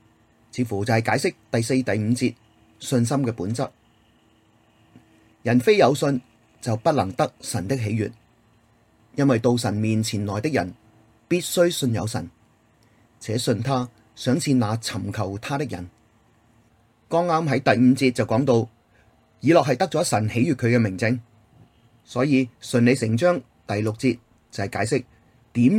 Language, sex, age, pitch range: Chinese, male, 30-49, 110-130 Hz